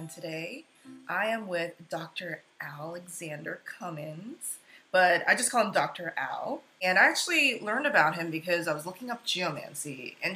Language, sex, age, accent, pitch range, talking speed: English, female, 20-39, American, 160-225 Hz, 155 wpm